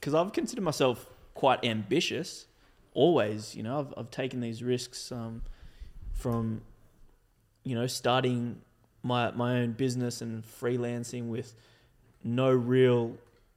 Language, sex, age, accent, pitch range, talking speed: English, male, 20-39, Australian, 115-130 Hz, 125 wpm